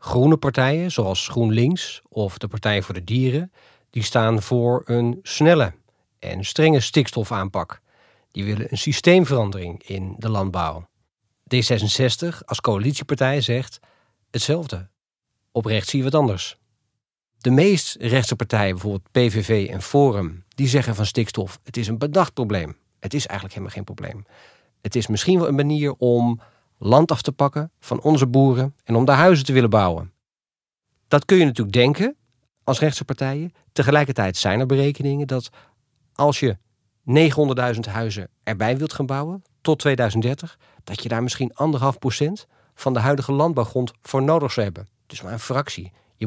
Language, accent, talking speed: Dutch, Dutch, 155 wpm